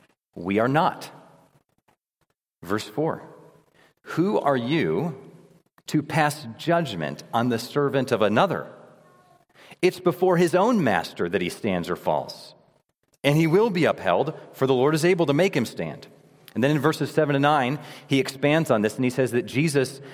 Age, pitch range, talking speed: 40-59, 125-155 Hz, 165 wpm